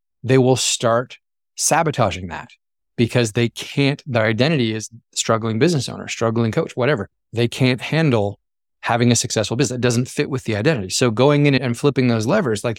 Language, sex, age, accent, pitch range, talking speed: English, male, 30-49, American, 110-135 Hz, 180 wpm